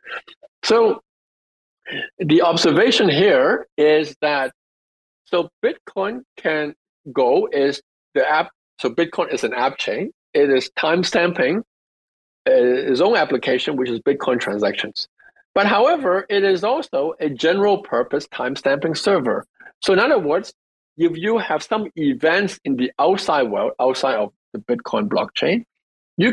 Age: 50-69